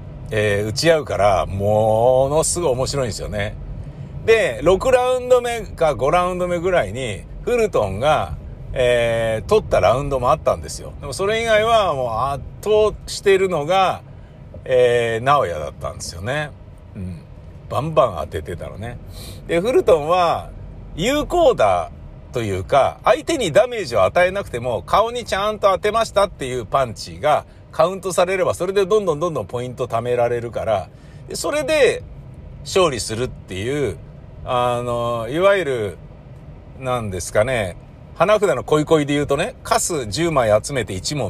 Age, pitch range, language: 60-79, 115-190 Hz, Japanese